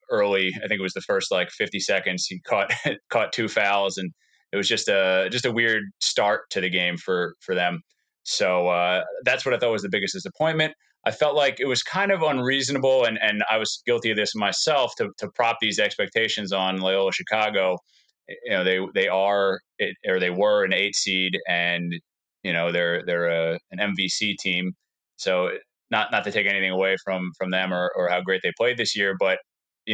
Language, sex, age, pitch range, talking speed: English, male, 20-39, 90-105 Hz, 210 wpm